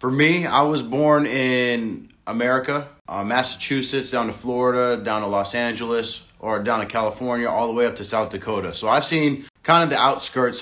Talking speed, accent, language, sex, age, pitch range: 190 wpm, American, English, male, 30-49, 110-140 Hz